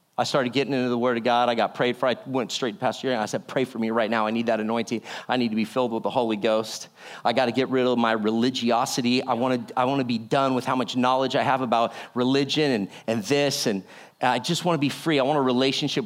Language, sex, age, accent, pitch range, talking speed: English, male, 40-59, American, 125-155 Hz, 285 wpm